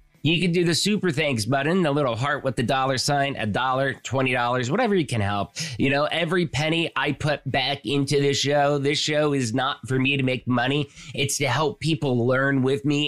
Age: 20-39